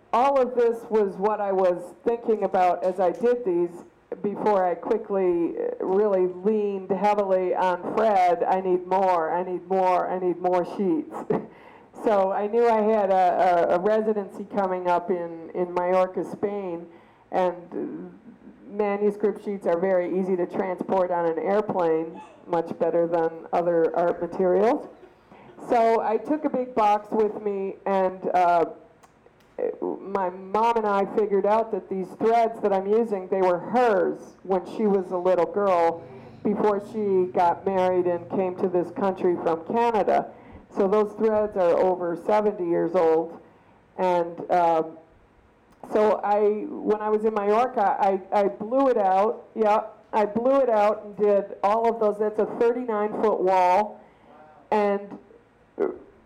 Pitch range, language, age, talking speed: 180-215 Hz, English, 50-69, 155 wpm